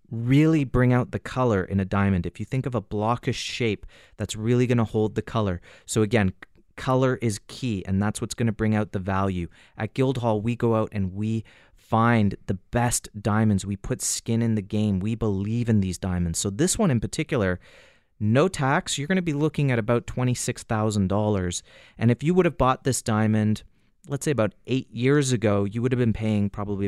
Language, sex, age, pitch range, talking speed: English, male, 30-49, 100-120 Hz, 210 wpm